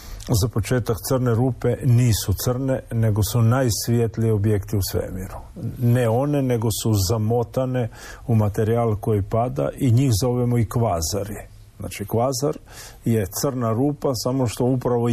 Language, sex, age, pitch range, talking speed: Croatian, male, 50-69, 105-120 Hz, 135 wpm